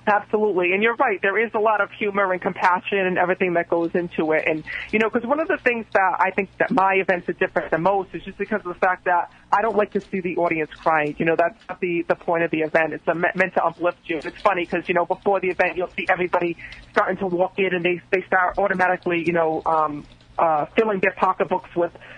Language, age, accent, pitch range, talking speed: English, 40-59, American, 170-200 Hz, 260 wpm